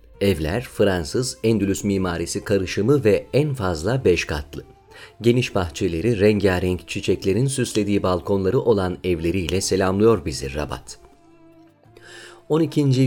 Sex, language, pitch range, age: male, Turkish, 90-125 Hz, 40-59